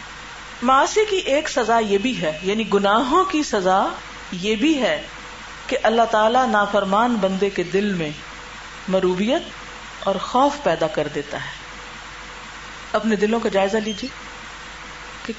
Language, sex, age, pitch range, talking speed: Urdu, female, 40-59, 195-270 Hz, 140 wpm